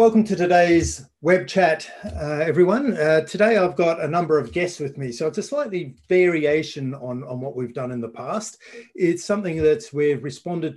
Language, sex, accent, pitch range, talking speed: English, male, Australian, 125-165 Hz, 195 wpm